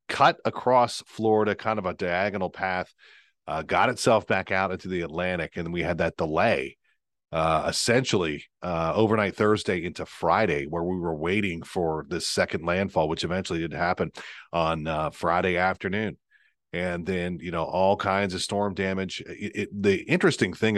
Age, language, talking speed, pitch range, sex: 40-59, English, 170 wpm, 85-105 Hz, male